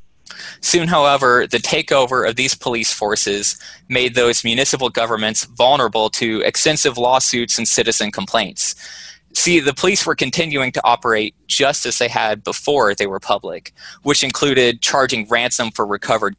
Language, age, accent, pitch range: English, 20-39, American, 115-150 Hz